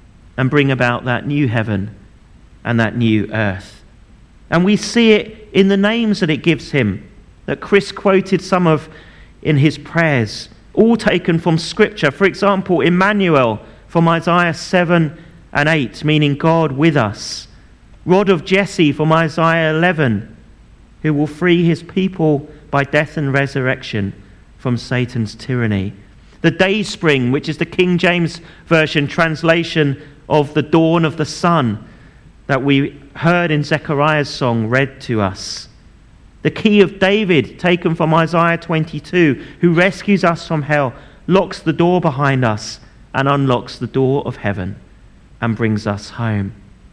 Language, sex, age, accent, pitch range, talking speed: English, male, 40-59, British, 120-175 Hz, 145 wpm